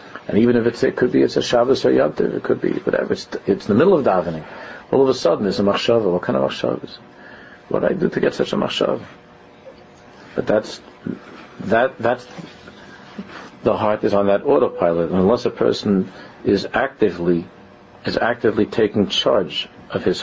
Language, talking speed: English, 190 wpm